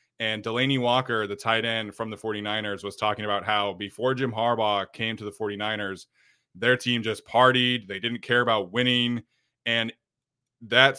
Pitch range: 105-125 Hz